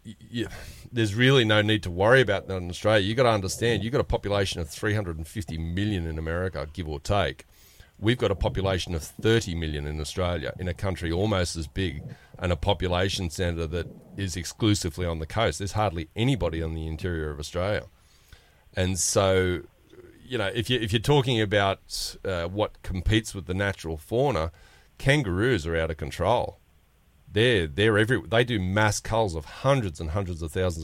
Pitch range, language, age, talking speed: 85-105 Hz, English, 30-49, 180 wpm